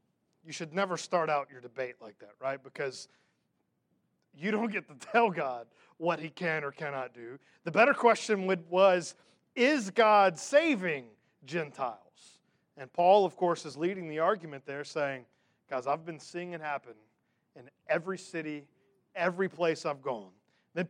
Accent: American